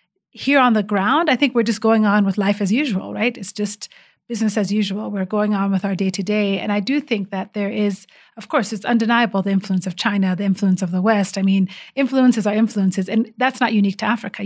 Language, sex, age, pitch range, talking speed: English, female, 30-49, 195-230 Hz, 235 wpm